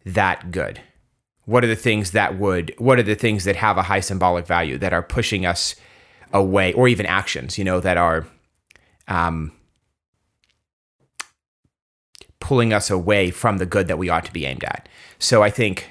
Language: English